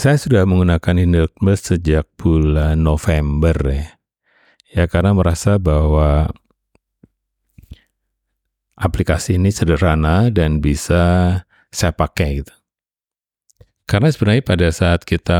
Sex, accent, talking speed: male, native, 95 wpm